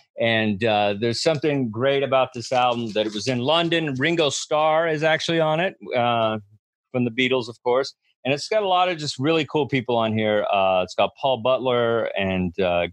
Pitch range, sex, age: 110-145 Hz, male, 30-49